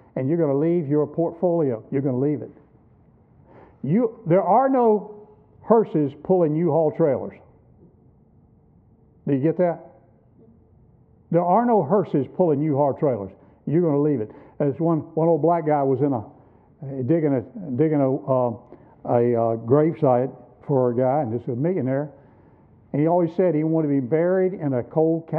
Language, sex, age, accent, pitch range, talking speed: English, male, 60-79, American, 135-175 Hz, 175 wpm